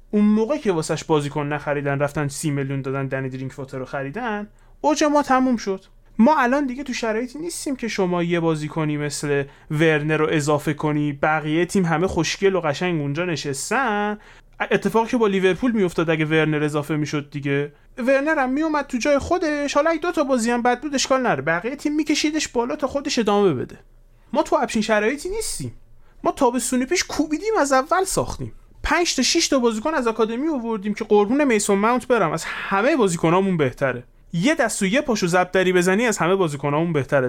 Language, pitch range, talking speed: Persian, 145-245 Hz, 180 wpm